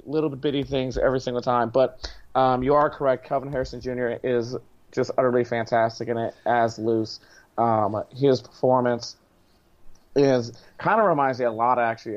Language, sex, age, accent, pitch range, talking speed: English, male, 30-49, American, 110-130 Hz, 165 wpm